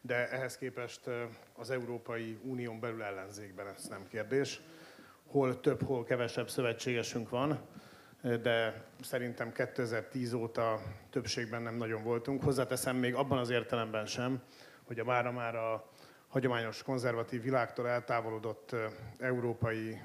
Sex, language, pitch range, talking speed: male, Hungarian, 115-130 Hz, 125 wpm